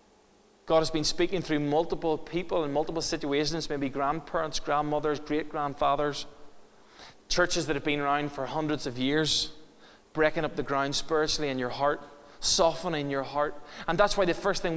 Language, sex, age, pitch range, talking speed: English, male, 20-39, 150-185 Hz, 165 wpm